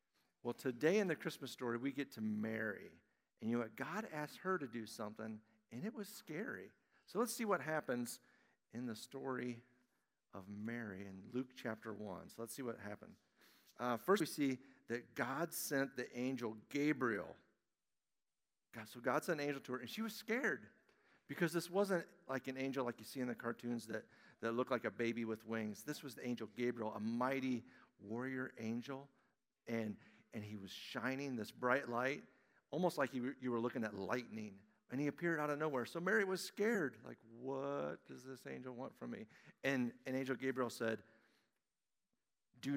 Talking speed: 185 wpm